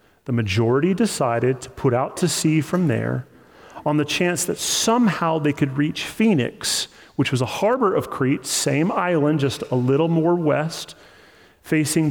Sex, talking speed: male, 165 wpm